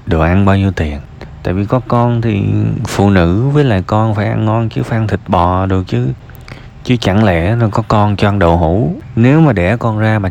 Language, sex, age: Vietnamese, male, 20-39